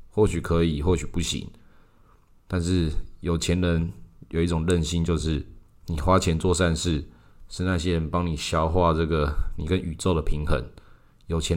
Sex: male